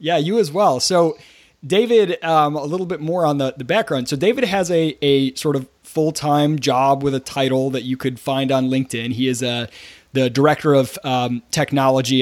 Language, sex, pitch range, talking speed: English, male, 130-155 Hz, 205 wpm